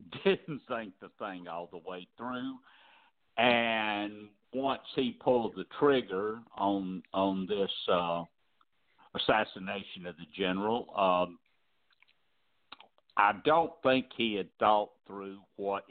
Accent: American